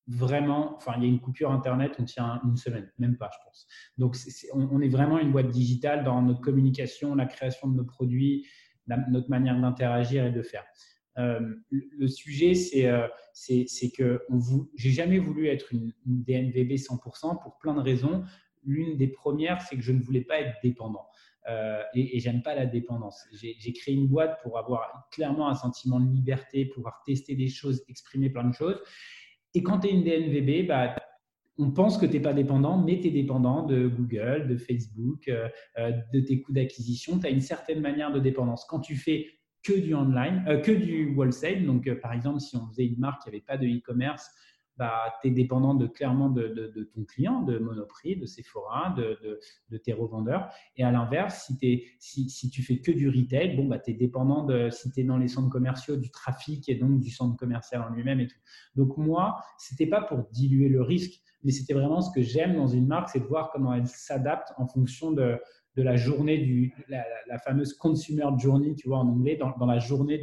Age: 20-39